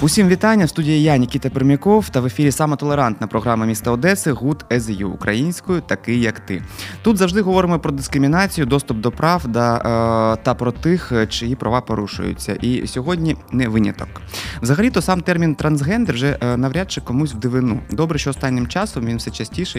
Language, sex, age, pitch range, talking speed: Ukrainian, male, 20-39, 115-150 Hz, 165 wpm